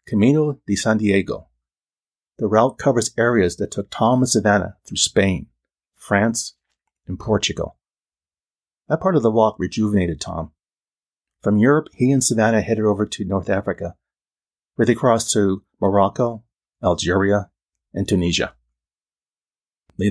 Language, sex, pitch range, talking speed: English, male, 90-110 Hz, 130 wpm